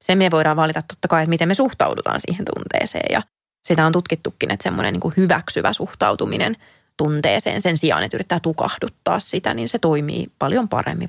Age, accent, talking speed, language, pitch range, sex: 20-39, native, 175 wpm, Finnish, 160-200 Hz, female